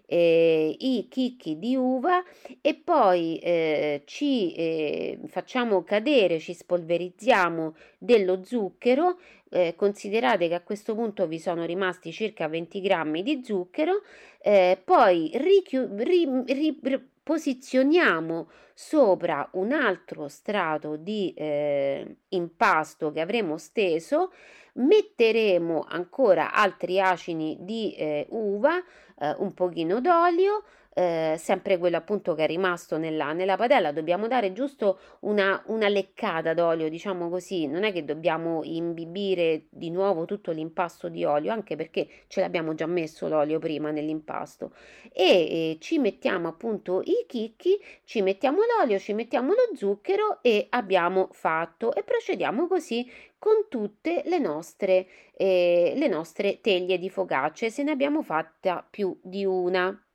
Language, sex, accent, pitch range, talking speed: Italian, female, native, 165-245 Hz, 135 wpm